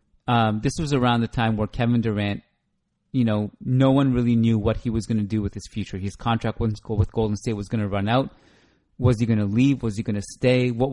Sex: male